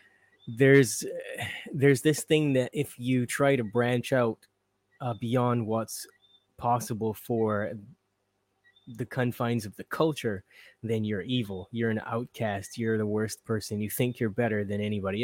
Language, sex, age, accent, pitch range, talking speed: English, male, 20-39, American, 110-130 Hz, 145 wpm